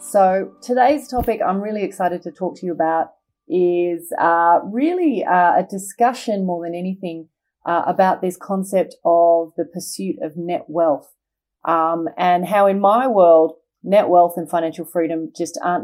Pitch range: 165-200 Hz